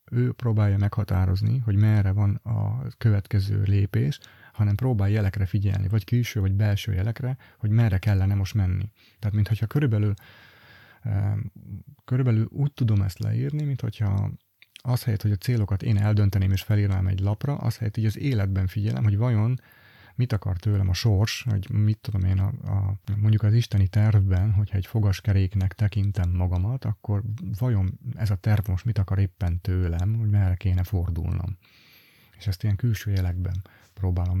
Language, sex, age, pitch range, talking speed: Hungarian, male, 30-49, 100-115 Hz, 160 wpm